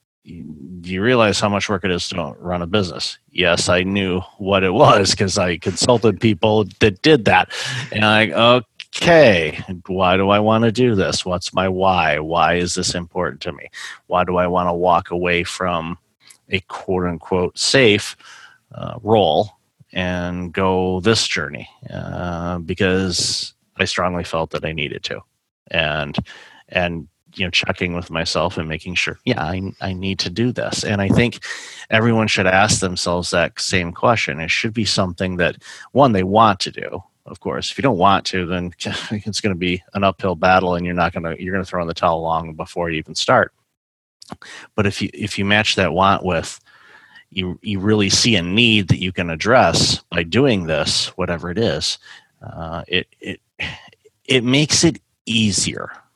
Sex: male